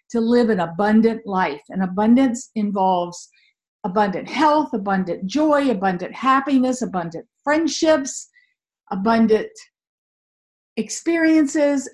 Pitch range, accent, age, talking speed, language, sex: 205-280 Hz, American, 50-69, 90 wpm, English, female